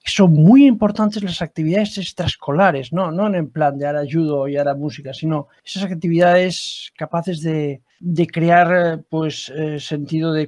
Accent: Spanish